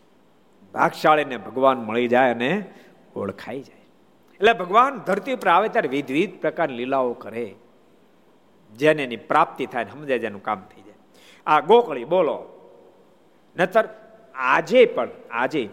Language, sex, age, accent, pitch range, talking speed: Gujarati, male, 50-69, native, 145-225 Hz, 130 wpm